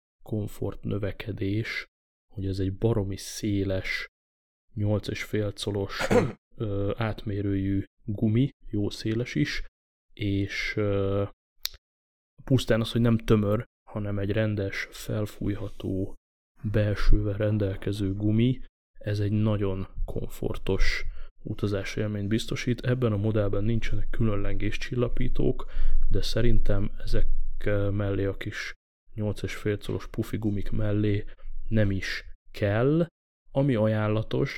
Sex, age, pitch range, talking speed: male, 20-39, 100-110 Hz, 95 wpm